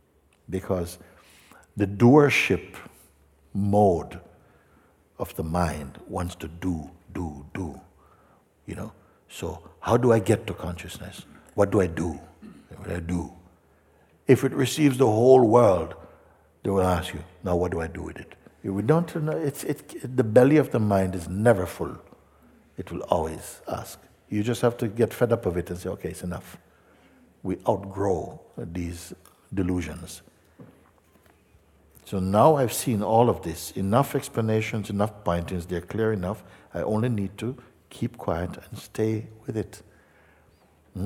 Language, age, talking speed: English, 60-79, 155 wpm